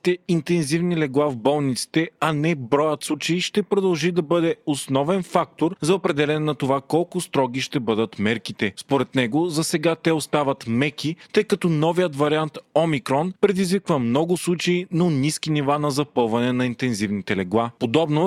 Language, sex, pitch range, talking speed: Bulgarian, male, 135-170 Hz, 155 wpm